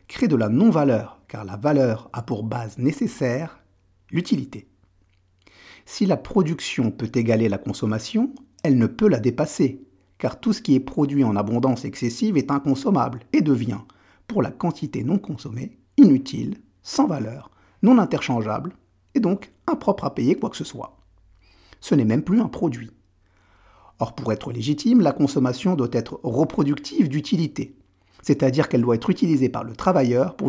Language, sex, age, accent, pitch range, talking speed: French, male, 50-69, French, 110-160 Hz, 160 wpm